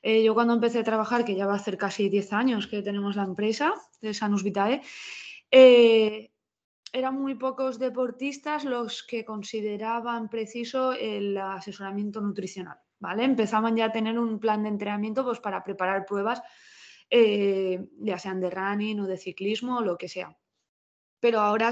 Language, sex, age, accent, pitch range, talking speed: Spanish, female, 20-39, Spanish, 195-230 Hz, 165 wpm